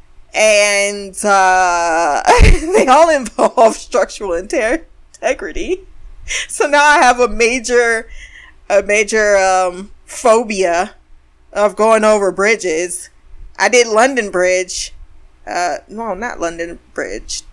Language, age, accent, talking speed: English, 20-39, American, 105 wpm